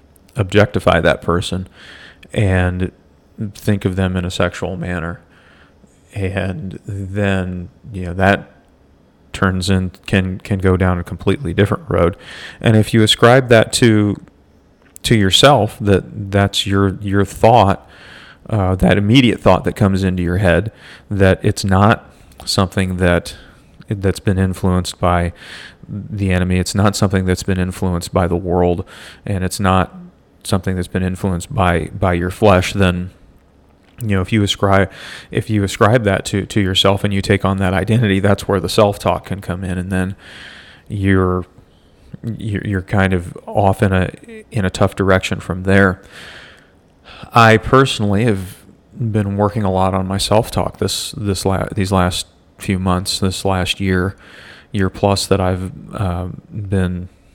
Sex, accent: male, American